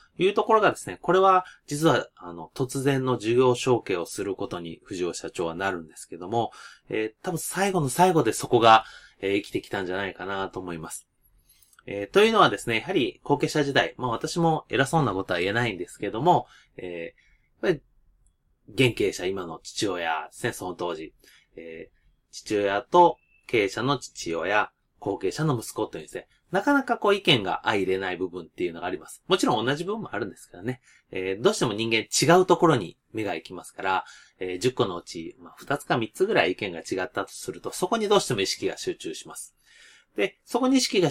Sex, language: male, Japanese